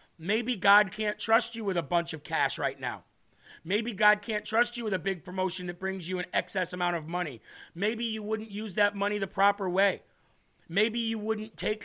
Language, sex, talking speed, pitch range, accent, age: English, male, 215 wpm, 180-215 Hz, American, 40-59